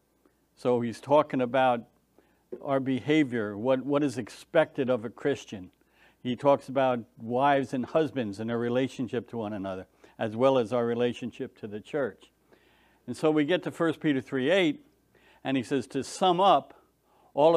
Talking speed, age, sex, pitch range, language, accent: 165 wpm, 60-79, male, 120-150 Hz, English, American